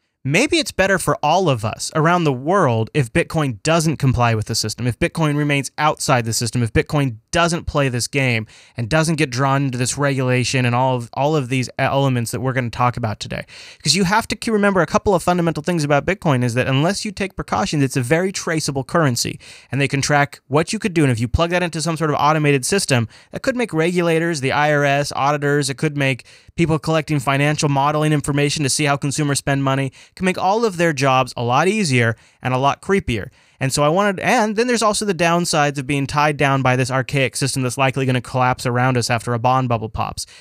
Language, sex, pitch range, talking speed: English, male, 130-160 Hz, 230 wpm